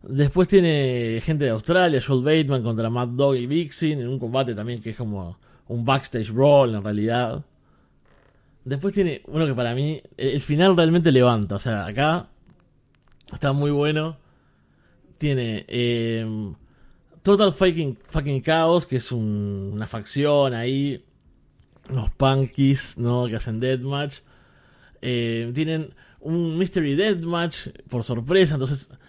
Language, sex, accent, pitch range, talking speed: Spanish, male, Argentinian, 120-155 Hz, 135 wpm